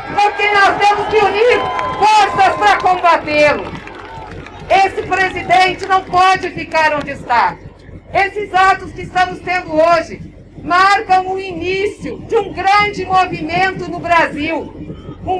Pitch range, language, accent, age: 335-385 Hz, Portuguese, Brazilian, 50-69